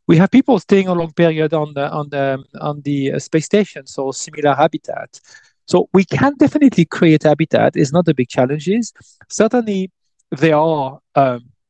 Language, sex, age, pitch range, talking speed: English, male, 40-59, 130-170 Hz, 170 wpm